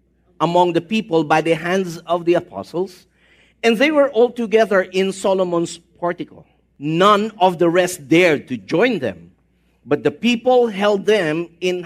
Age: 50-69